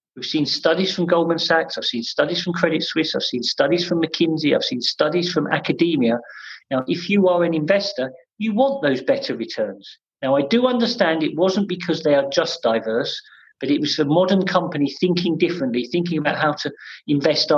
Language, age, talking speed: English, 40-59, 195 wpm